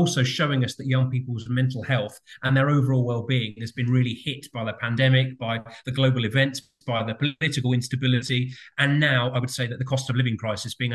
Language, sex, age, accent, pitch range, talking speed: English, male, 30-49, British, 125-150 Hz, 220 wpm